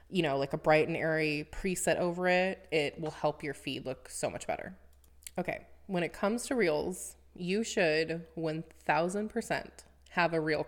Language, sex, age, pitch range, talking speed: English, female, 20-39, 160-200 Hz, 175 wpm